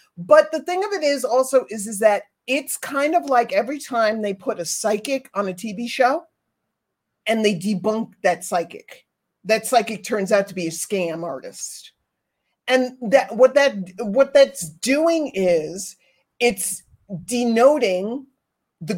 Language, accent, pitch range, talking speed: English, American, 195-270 Hz, 155 wpm